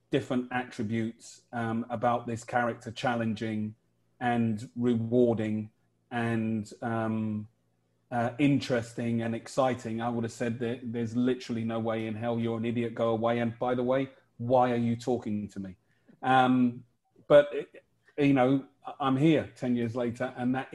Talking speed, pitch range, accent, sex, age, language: 155 wpm, 110-125 Hz, British, male, 30-49, English